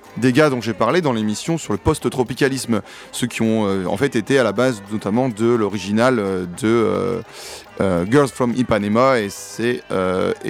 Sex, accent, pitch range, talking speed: male, French, 100-130 Hz, 185 wpm